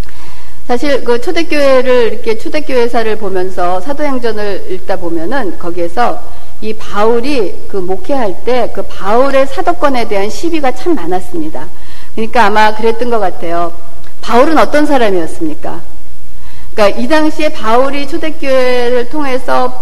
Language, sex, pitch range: Korean, female, 195-300 Hz